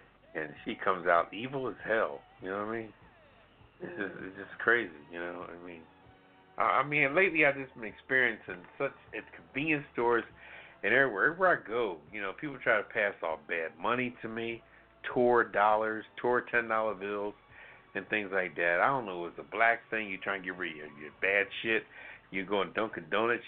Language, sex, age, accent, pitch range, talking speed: English, male, 60-79, American, 100-150 Hz, 200 wpm